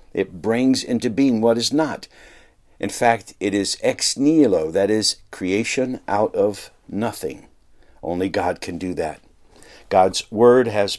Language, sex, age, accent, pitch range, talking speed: English, male, 60-79, American, 95-125 Hz, 145 wpm